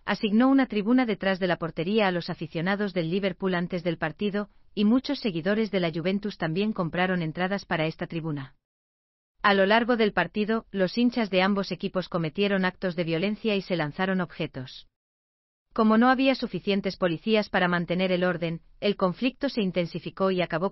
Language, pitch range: German, 170-205 Hz